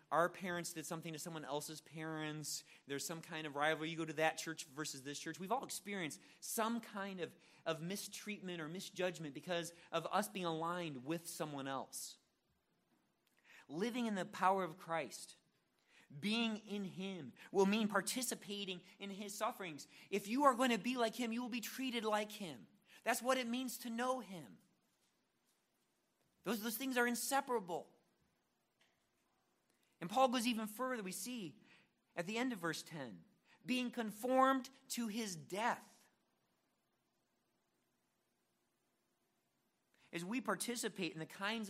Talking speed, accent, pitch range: 150 wpm, American, 160-220 Hz